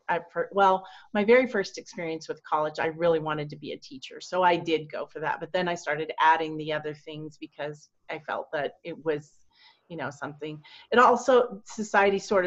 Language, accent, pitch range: English, American, 165-205 Hz